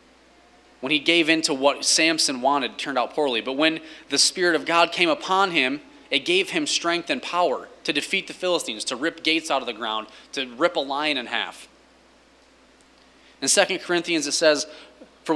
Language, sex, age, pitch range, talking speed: English, male, 20-39, 125-170 Hz, 195 wpm